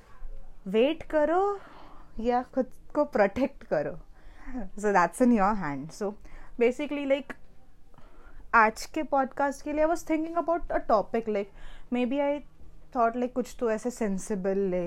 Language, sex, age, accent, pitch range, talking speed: English, female, 20-39, Indian, 195-265 Hz, 130 wpm